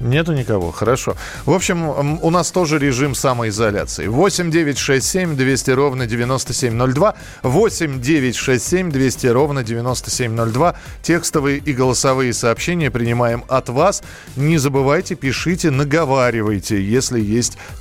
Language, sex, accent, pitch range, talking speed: Russian, male, native, 125-165 Hz, 115 wpm